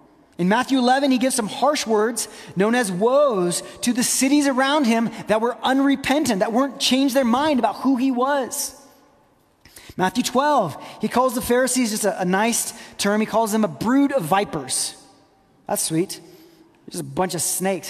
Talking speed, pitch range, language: 180 wpm, 180-255 Hz, English